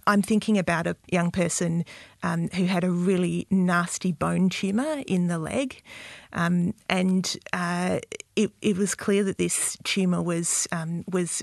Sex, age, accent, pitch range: female, 40-59, Australian, 170-195 Hz